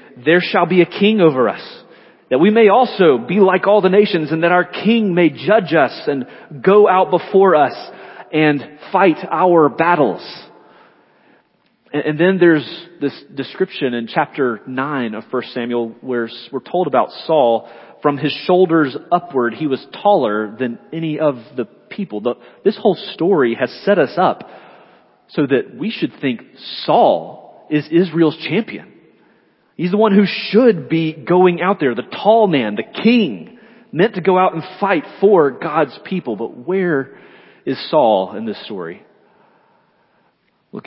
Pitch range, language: 130-185 Hz, English